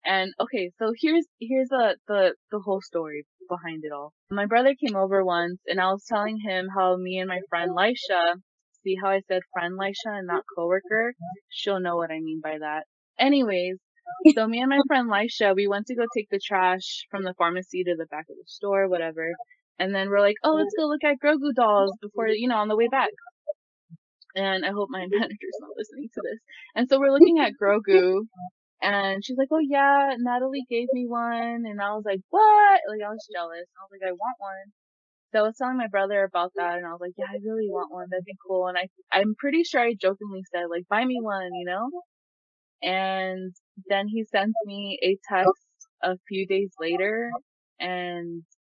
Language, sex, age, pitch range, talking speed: English, female, 20-39, 185-245 Hz, 210 wpm